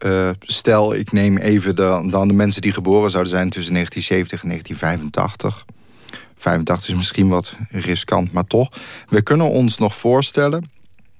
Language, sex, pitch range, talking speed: Dutch, male, 95-115 Hz, 155 wpm